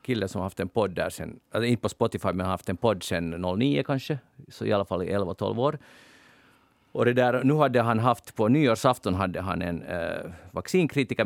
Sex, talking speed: male, 215 wpm